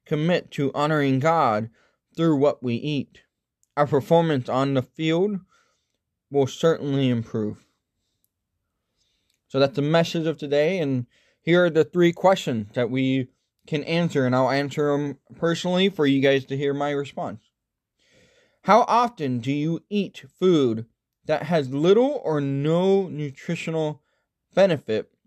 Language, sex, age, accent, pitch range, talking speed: English, male, 20-39, American, 130-170 Hz, 135 wpm